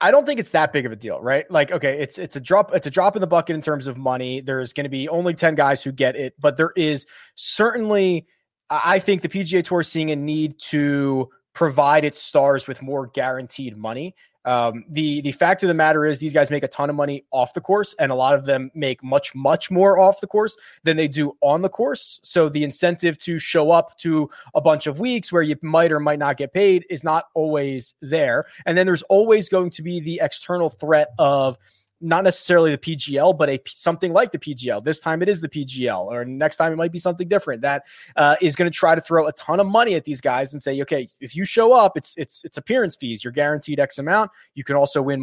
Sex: male